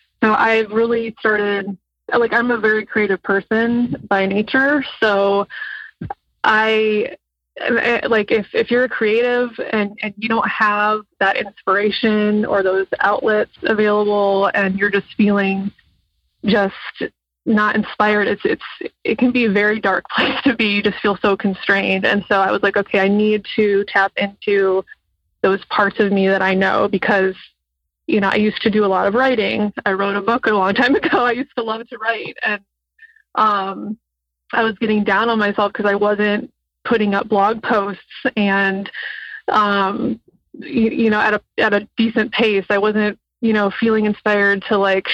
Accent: American